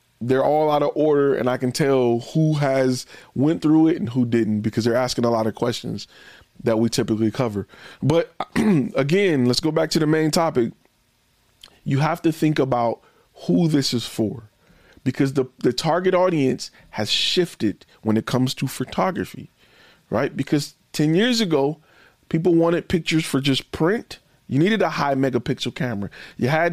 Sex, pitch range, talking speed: male, 130-180 Hz, 175 wpm